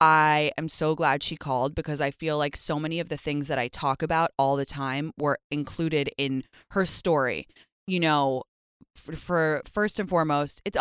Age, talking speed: 20-39, 195 wpm